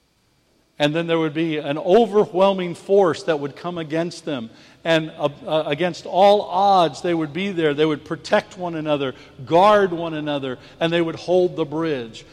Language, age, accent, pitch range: English, 60-79, American, 165-210 Hz